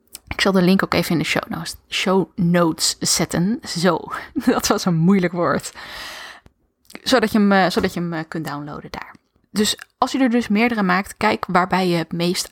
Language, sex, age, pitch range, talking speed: Dutch, female, 20-39, 170-210 Hz, 180 wpm